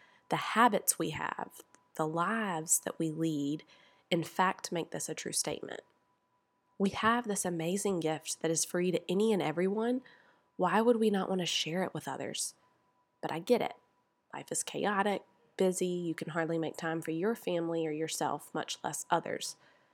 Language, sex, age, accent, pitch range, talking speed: English, female, 20-39, American, 160-190 Hz, 180 wpm